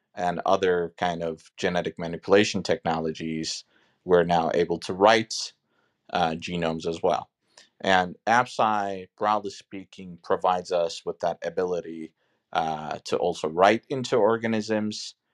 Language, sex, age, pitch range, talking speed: English, male, 30-49, 85-100 Hz, 120 wpm